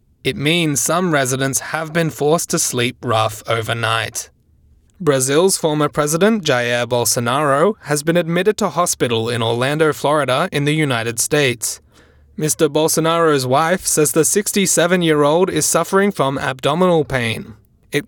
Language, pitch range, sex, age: English, 130-170 Hz, male, 20-39